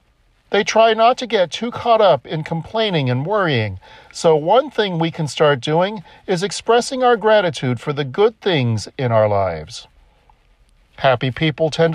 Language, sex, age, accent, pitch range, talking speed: English, male, 40-59, American, 130-215 Hz, 165 wpm